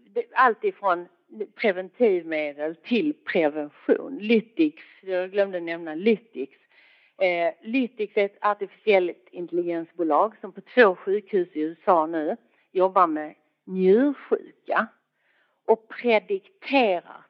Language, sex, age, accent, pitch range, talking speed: Swedish, female, 50-69, native, 170-260 Hz, 95 wpm